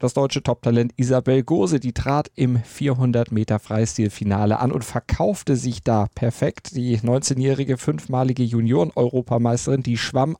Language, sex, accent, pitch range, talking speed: German, male, German, 115-140 Hz, 120 wpm